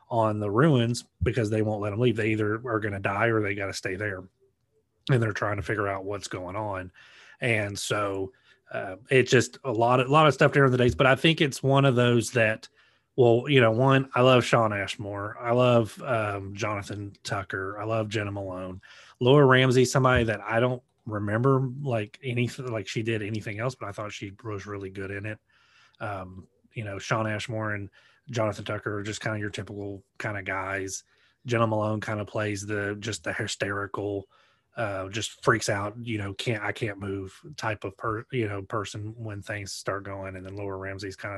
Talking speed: 205 wpm